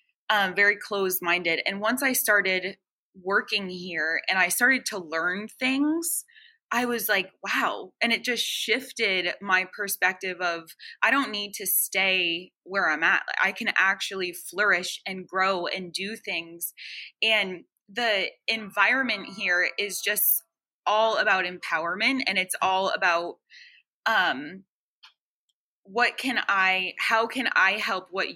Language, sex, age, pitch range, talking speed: English, female, 20-39, 185-230 Hz, 140 wpm